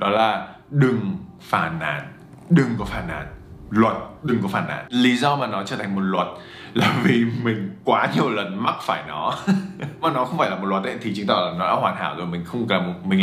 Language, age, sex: Vietnamese, 20-39, male